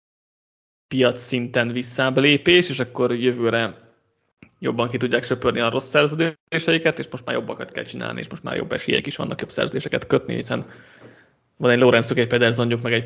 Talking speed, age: 170 wpm, 20-39